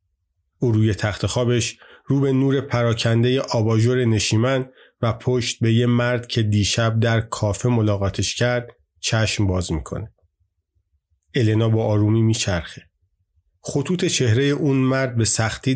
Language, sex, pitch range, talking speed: Persian, male, 95-120 Hz, 130 wpm